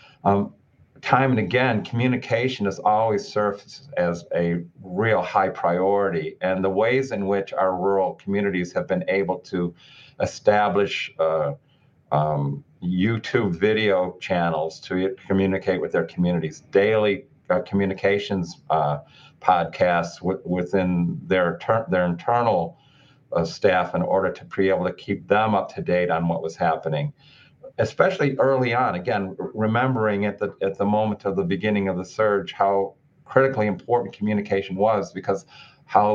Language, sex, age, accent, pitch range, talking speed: English, male, 50-69, American, 90-110 Hz, 140 wpm